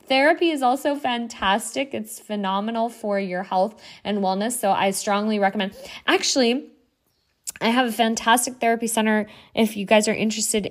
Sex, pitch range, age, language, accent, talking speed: female, 190-230 Hz, 20-39, English, American, 150 wpm